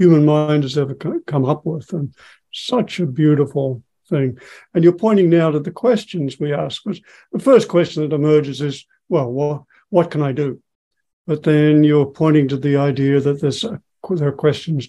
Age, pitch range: 60-79, 140-165 Hz